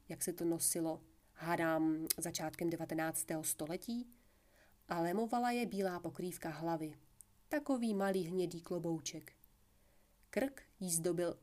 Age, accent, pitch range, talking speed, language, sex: 30-49, native, 160-215 Hz, 110 wpm, Czech, female